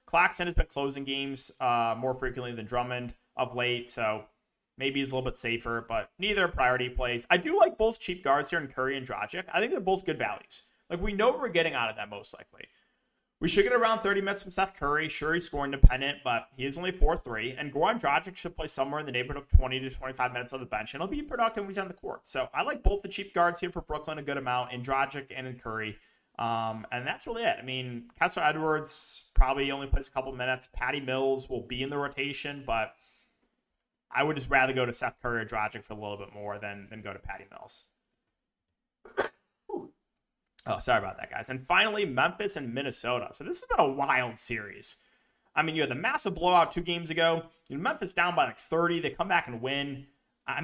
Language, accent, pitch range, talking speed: English, American, 125-170 Hz, 235 wpm